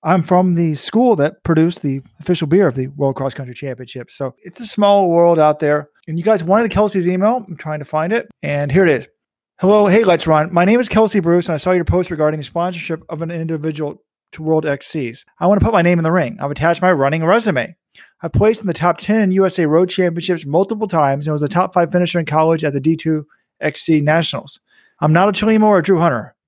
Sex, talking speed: male, 240 wpm